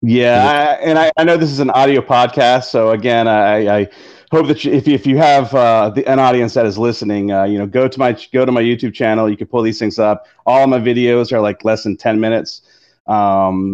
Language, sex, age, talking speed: English, male, 30-49, 250 wpm